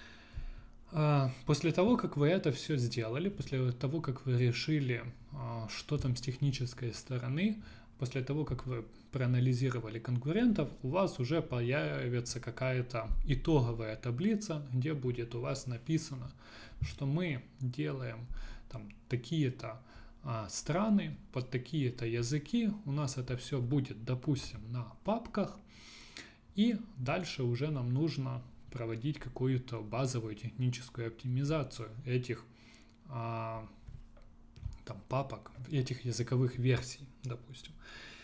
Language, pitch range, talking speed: Russian, 115-145 Hz, 105 wpm